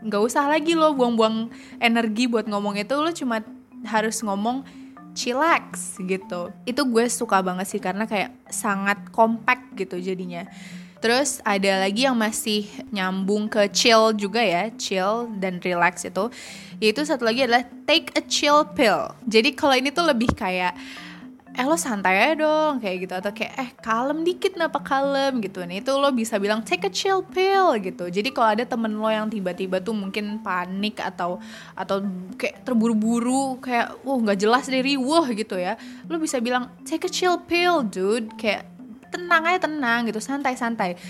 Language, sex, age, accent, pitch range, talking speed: Indonesian, female, 20-39, native, 195-255 Hz, 165 wpm